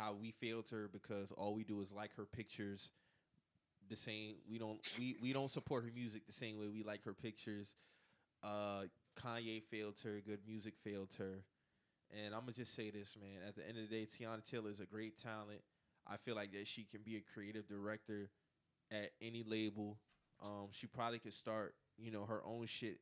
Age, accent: 20-39, American